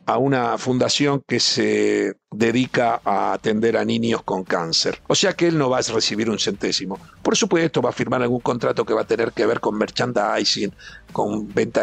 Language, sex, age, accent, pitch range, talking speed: Spanish, male, 50-69, Argentinian, 125-175 Hz, 200 wpm